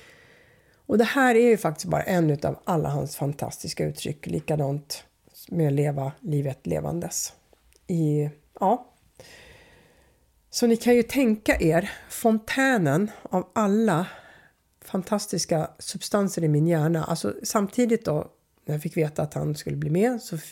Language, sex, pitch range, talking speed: Swedish, female, 155-225 Hz, 140 wpm